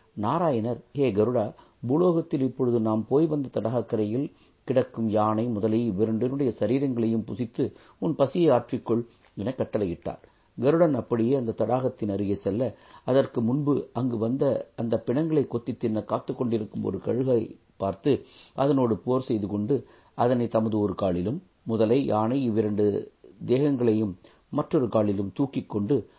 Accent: native